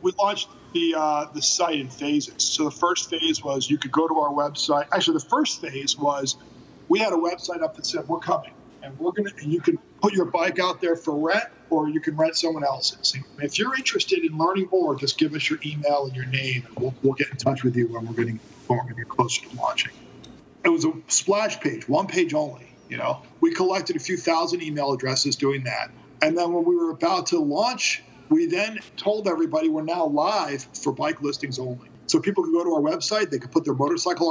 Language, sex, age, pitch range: English, male, 50-69, 135-215 Hz